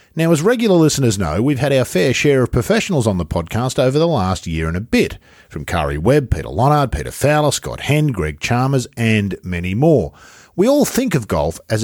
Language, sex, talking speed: English, male, 215 wpm